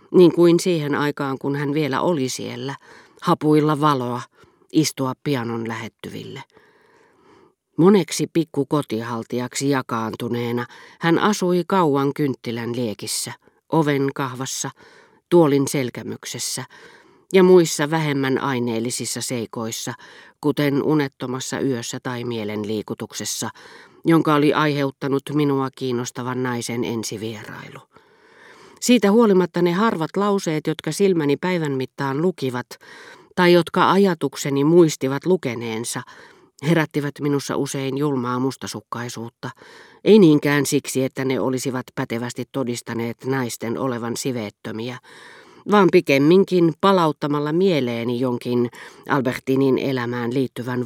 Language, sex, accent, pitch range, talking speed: Finnish, female, native, 125-160 Hz, 95 wpm